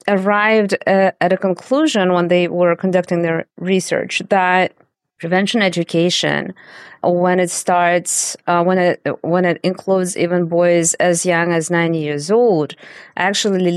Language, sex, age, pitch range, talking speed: English, female, 30-49, 170-200 Hz, 140 wpm